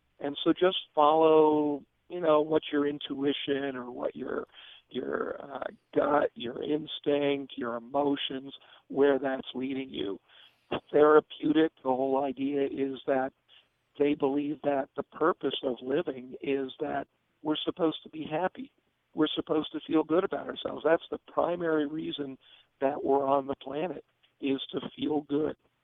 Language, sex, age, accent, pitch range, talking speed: English, male, 50-69, American, 135-155 Hz, 145 wpm